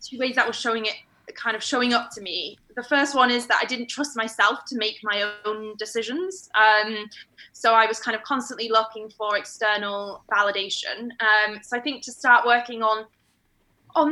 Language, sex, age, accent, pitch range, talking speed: English, female, 20-39, British, 210-250 Hz, 195 wpm